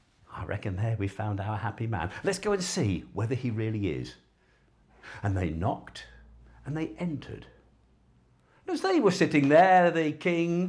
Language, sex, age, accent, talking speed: English, male, 50-69, British, 170 wpm